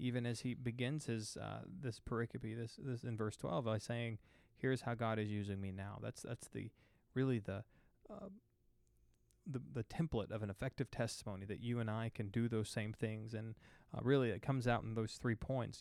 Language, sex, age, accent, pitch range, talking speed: English, male, 20-39, American, 110-125 Hz, 205 wpm